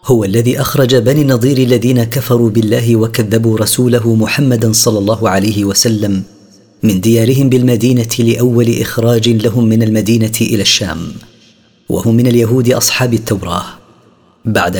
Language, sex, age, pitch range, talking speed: Arabic, female, 40-59, 110-125 Hz, 125 wpm